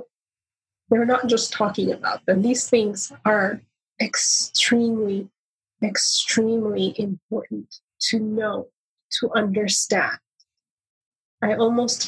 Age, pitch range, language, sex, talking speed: 30-49, 190-225 Hz, English, female, 90 wpm